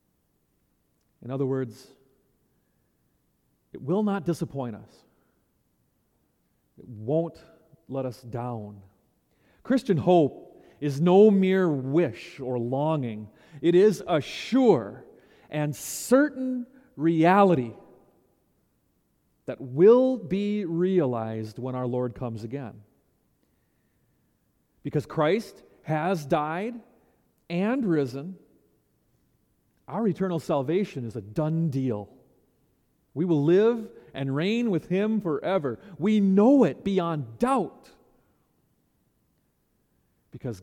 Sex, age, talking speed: male, 40-59, 95 wpm